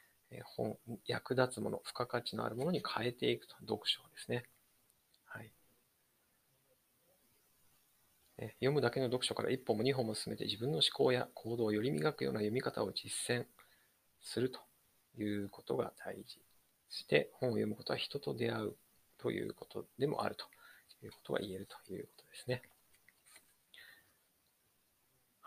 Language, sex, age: Japanese, male, 40-59